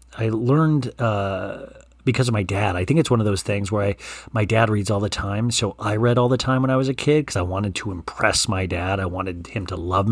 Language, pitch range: English, 95-125 Hz